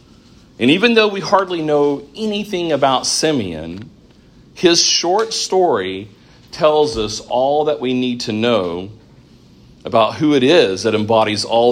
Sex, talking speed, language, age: male, 140 wpm, English, 40-59